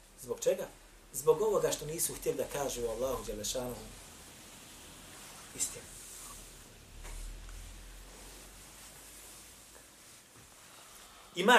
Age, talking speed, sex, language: 30-49, 65 wpm, male, English